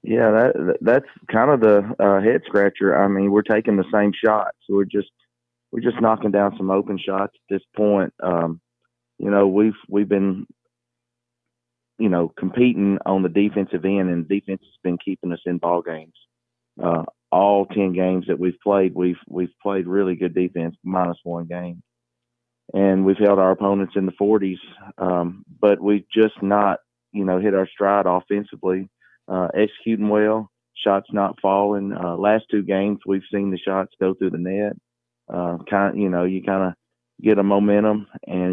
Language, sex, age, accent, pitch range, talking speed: English, male, 30-49, American, 90-100 Hz, 180 wpm